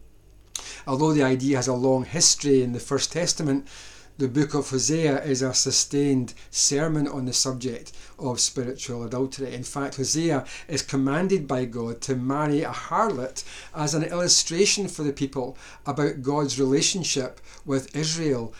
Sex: male